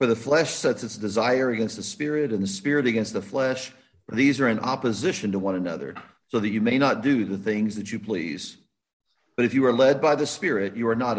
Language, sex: English, male